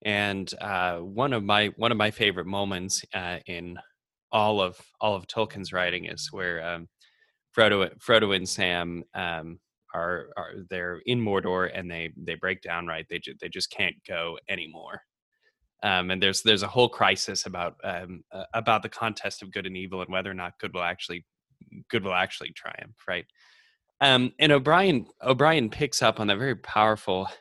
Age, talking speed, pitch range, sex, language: 20-39, 180 wpm, 90-110 Hz, male, English